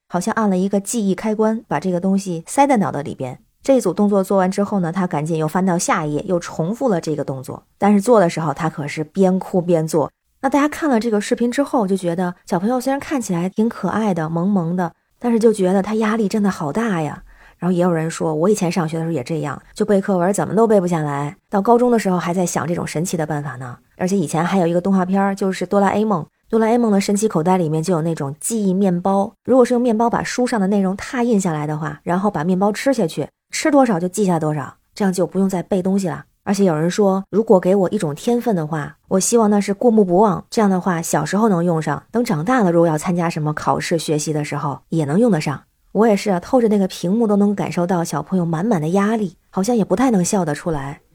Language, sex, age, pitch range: Chinese, female, 20-39, 165-215 Hz